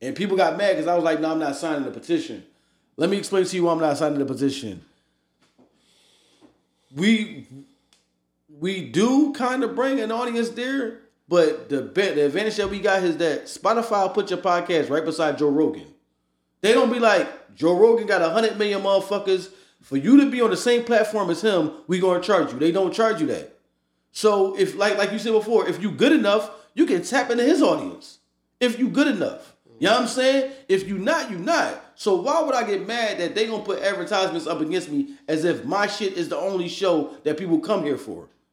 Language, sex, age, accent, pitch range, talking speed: English, male, 30-49, American, 170-235 Hz, 220 wpm